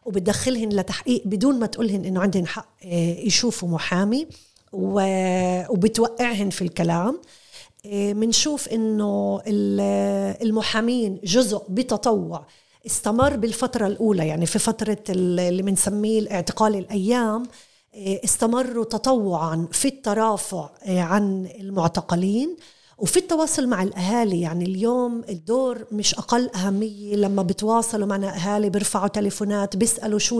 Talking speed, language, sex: 105 wpm, Arabic, female